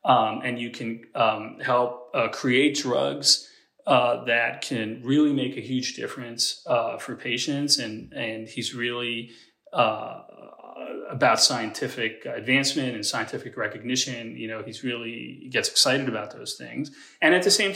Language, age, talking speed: English, 30-49, 150 wpm